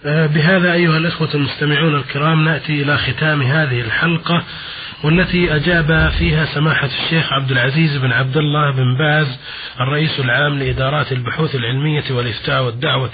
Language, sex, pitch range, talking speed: Arabic, male, 135-160 Hz, 130 wpm